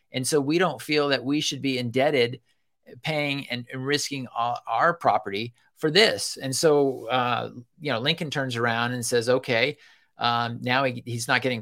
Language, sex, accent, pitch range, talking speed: English, male, American, 115-145 Hz, 170 wpm